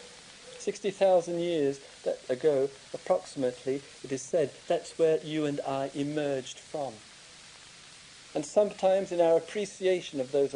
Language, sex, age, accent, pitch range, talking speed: English, male, 50-69, British, 125-185 Hz, 120 wpm